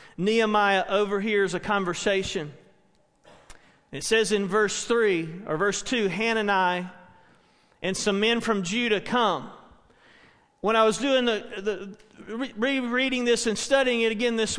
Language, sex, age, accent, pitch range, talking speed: English, male, 40-59, American, 205-260 Hz, 130 wpm